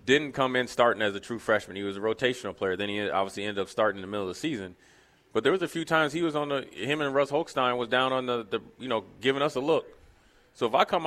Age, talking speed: 30-49, 305 wpm